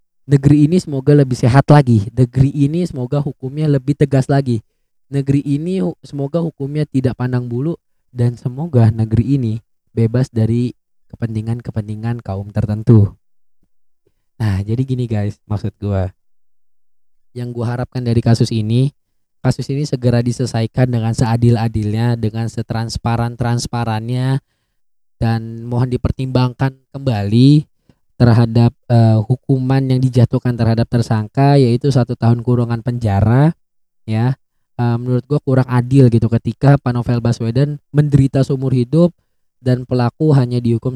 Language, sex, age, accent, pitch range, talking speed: Indonesian, male, 20-39, native, 115-140 Hz, 120 wpm